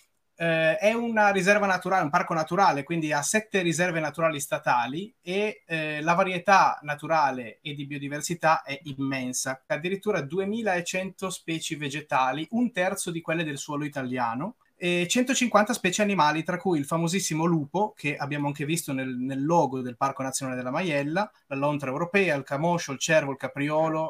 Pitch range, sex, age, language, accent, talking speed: 140-185 Hz, male, 30-49, Italian, native, 160 wpm